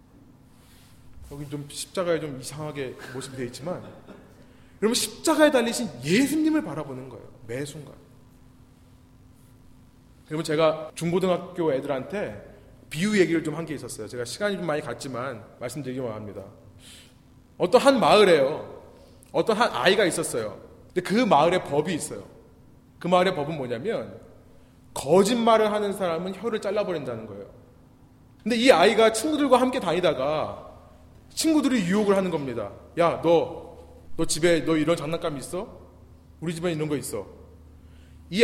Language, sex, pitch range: Korean, male, 130-205 Hz